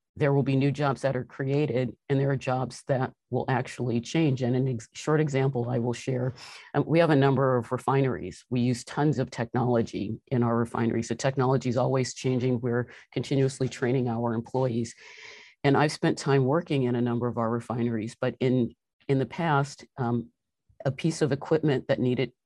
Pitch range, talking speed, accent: 120-135 Hz, 190 wpm, American